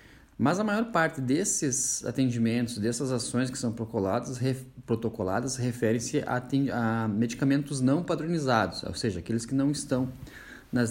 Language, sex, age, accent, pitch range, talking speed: Portuguese, male, 20-39, Brazilian, 105-130 Hz, 150 wpm